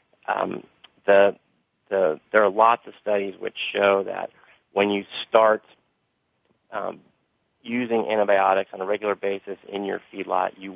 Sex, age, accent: male, 40-59, American